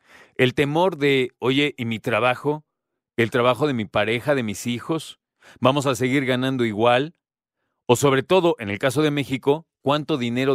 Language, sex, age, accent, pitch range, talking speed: Spanish, male, 40-59, Mexican, 115-155 Hz, 170 wpm